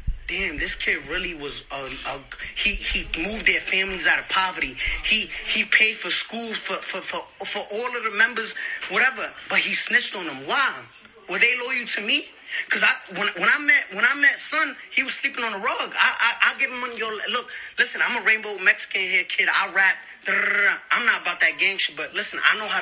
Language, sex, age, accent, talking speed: English, male, 20-39, American, 230 wpm